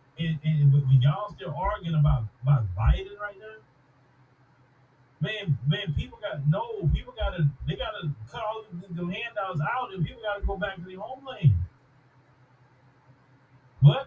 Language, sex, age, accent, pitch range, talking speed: English, male, 30-49, American, 135-180 Hz, 155 wpm